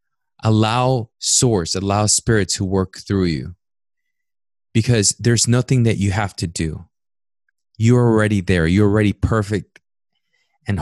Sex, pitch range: male, 95-120 Hz